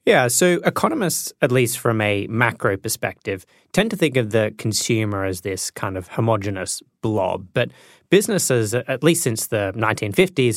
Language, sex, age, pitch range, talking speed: English, male, 20-39, 100-125 Hz, 160 wpm